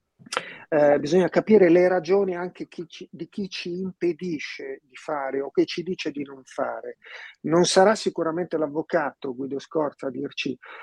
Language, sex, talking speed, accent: Italian, male, 150 wpm, native